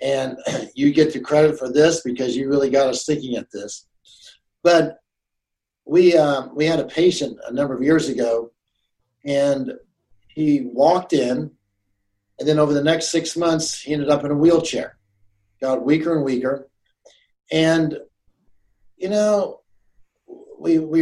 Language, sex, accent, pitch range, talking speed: English, male, American, 130-160 Hz, 150 wpm